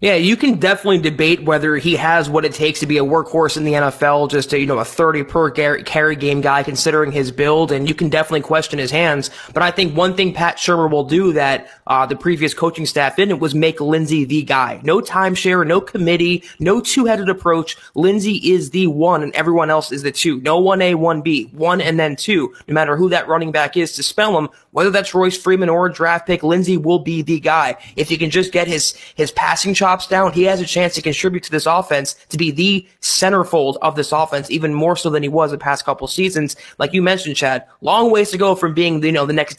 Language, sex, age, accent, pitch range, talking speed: English, male, 20-39, American, 150-180 Hz, 240 wpm